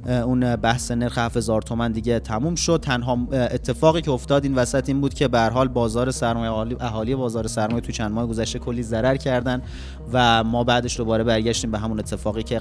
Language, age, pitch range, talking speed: Persian, 30-49, 125-155 Hz, 180 wpm